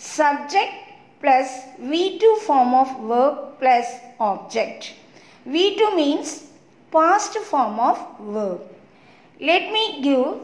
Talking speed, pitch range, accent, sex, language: 100 wpm, 255-345 Hz, native, female, Tamil